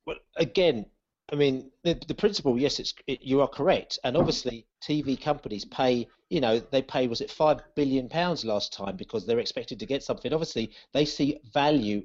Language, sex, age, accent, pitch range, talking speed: English, male, 40-59, British, 125-170 Hz, 190 wpm